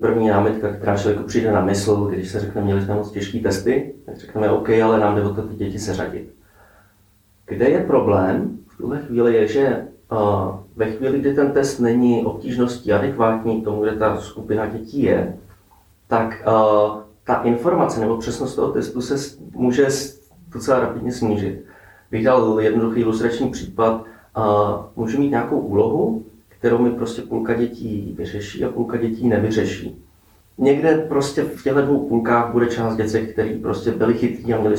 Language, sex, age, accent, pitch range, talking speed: Czech, male, 30-49, native, 105-120 Hz, 165 wpm